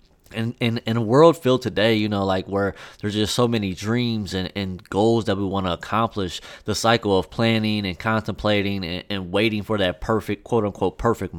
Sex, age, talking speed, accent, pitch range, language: male, 20-39, 205 wpm, American, 95-110 Hz, English